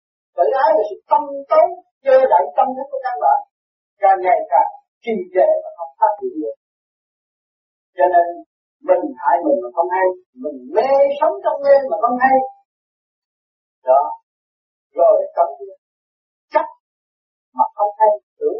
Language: Vietnamese